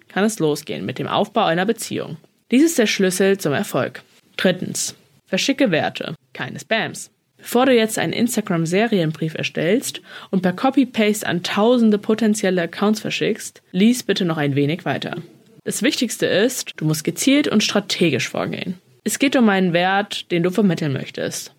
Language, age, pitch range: German, 20-39, 170-220 Hz